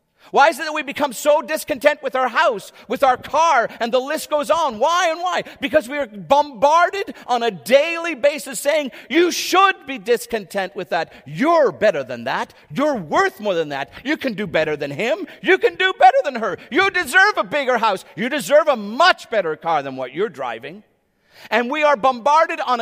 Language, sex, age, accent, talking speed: English, male, 50-69, American, 205 wpm